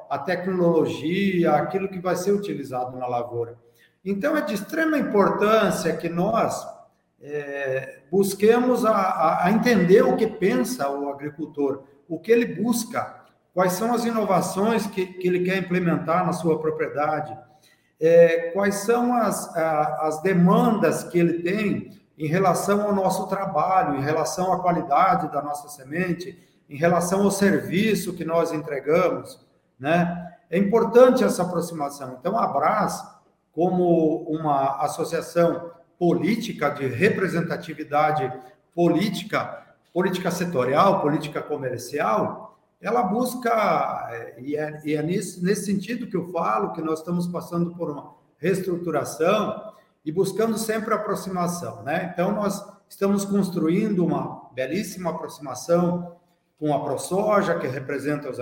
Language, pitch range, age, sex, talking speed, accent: Portuguese, 155-200 Hz, 50-69, male, 130 wpm, Brazilian